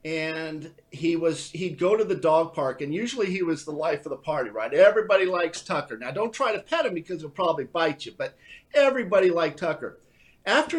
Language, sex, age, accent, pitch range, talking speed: English, male, 50-69, American, 155-215 Hz, 210 wpm